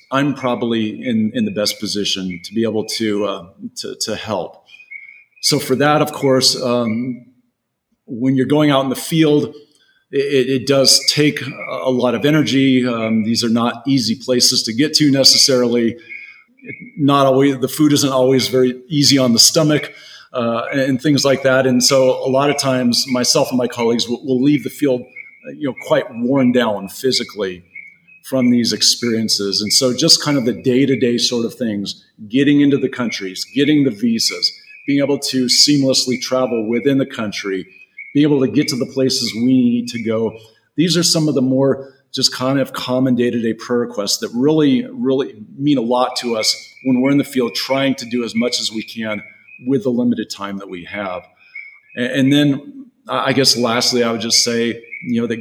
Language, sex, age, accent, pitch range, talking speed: English, male, 40-59, American, 115-140 Hz, 190 wpm